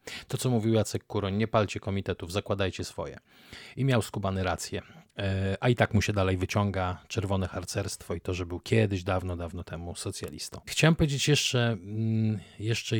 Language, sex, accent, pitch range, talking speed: Polish, male, native, 105-135 Hz, 165 wpm